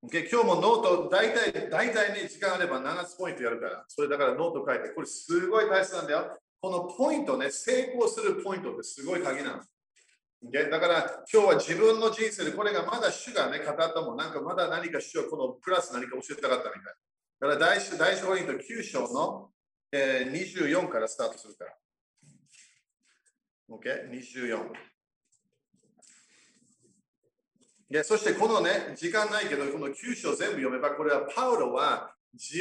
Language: Japanese